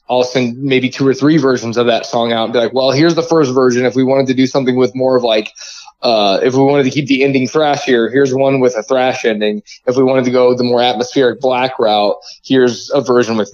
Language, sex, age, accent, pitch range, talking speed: English, male, 20-39, American, 115-135 Hz, 255 wpm